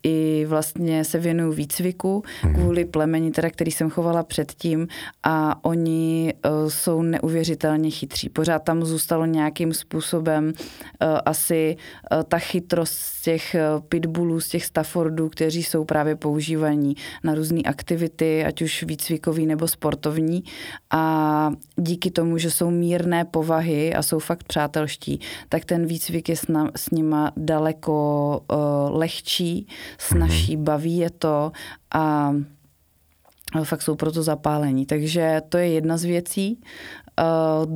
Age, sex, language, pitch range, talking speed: 30-49, female, Slovak, 155-170 Hz, 125 wpm